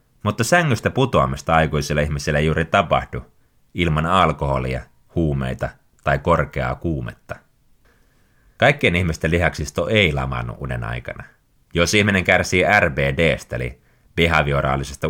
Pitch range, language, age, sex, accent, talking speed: 70-95 Hz, Finnish, 30-49, male, native, 105 wpm